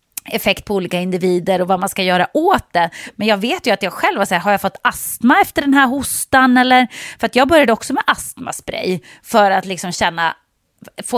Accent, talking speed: Swedish, 220 wpm